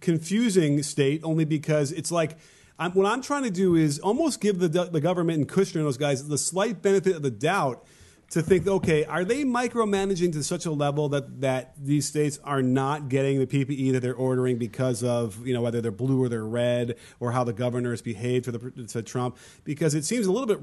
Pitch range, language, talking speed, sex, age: 125-155 Hz, English, 220 wpm, male, 30-49